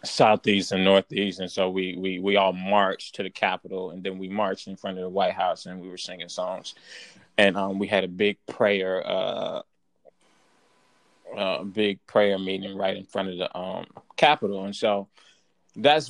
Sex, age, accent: male, 20-39, American